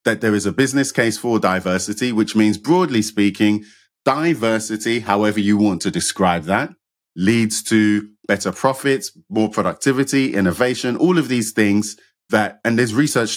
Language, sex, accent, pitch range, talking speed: English, male, British, 105-135 Hz, 155 wpm